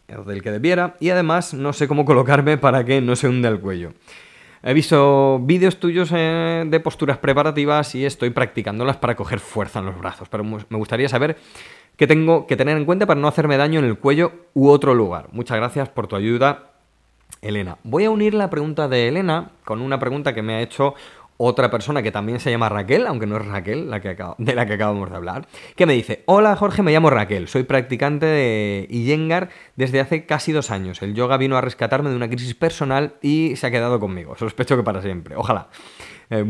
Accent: Spanish